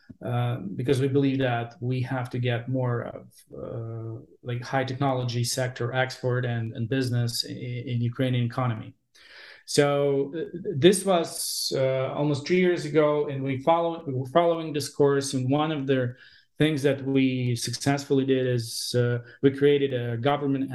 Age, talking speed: 40-59, 160 wpm